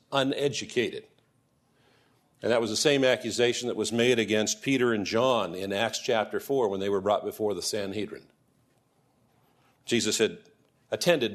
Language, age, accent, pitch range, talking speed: English, 50-69, American, 110-140 Hz, 150 wpm